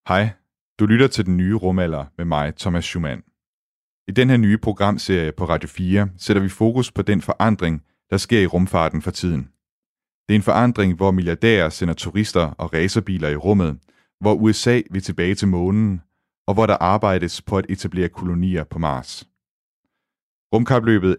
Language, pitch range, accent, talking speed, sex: Danish, 85-100 Hz, native, 170 wpm, male